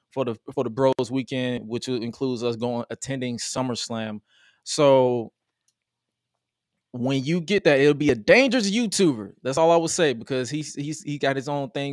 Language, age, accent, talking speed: English, 20-39, American, 175 wpm